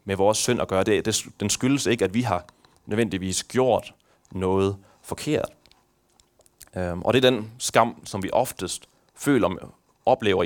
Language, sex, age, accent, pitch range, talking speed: Danish, male, 30-49, native, 95-125 Hz, 160 wpm